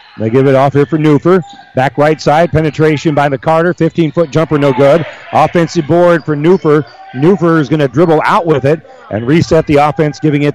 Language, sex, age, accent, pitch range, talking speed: English, male, 40-59, American, 150-185 Hz, 200 wpm